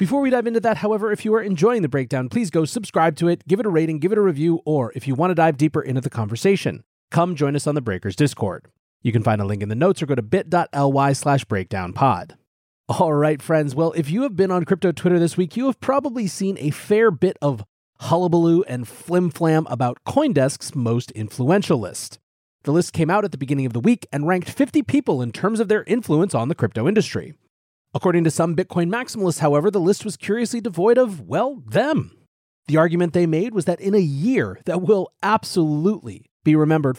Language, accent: English, American